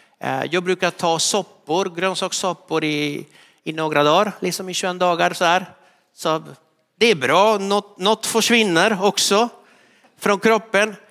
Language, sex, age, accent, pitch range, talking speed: Swedish, male, 50-69, native, 160-210 Hz, 135 wpm